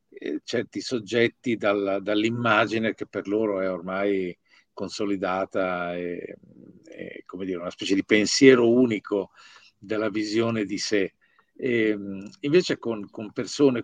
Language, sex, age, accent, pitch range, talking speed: Italian, male, 50-69, native, 95-125 Hz, 120 wpm